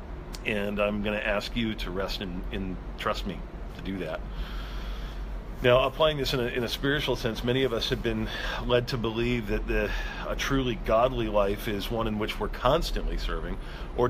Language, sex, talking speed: English, male, 195 wpm